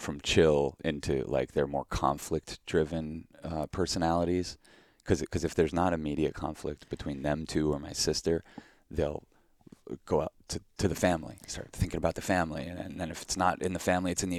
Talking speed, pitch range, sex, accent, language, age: 190 wpm, 80-95 Hz, male, American, English, 30-49